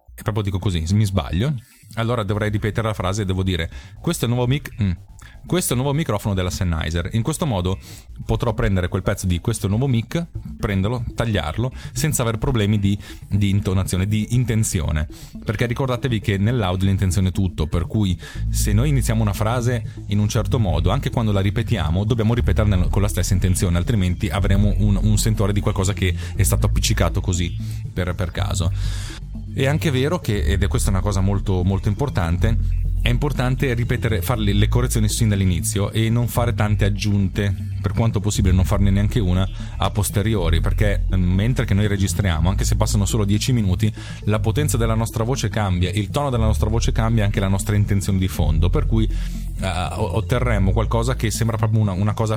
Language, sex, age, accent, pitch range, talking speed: Italian, male, 30-49, native, 95-110 Hz, 190 wpm